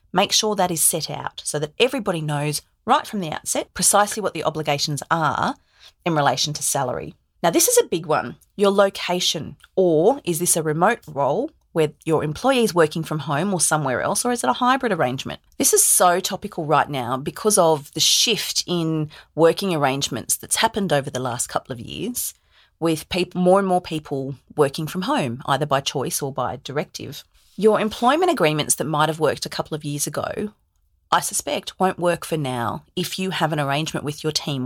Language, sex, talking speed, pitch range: English, female, 195 wpm, 145-195 Hz